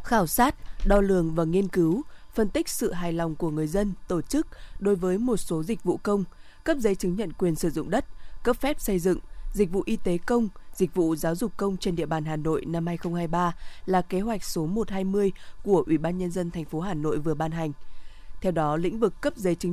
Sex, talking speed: female, 235 wpm